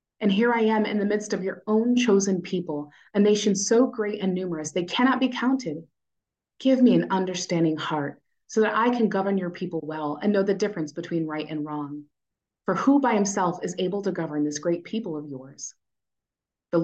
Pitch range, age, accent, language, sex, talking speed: 155-200 Hz, 30-49, American, English, female, 205 wpm